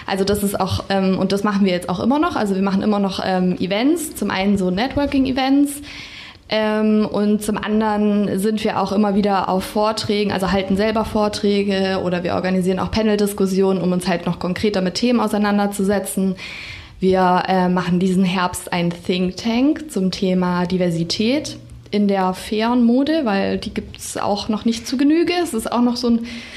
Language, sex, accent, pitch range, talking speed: German, female, German, 185-220 Hz, 185 wpm